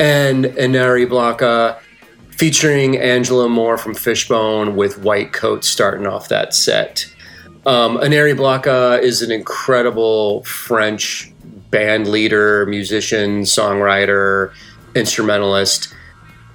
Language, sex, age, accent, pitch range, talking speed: English, male, 30-49, American, 105-125 Hz, 100 wpm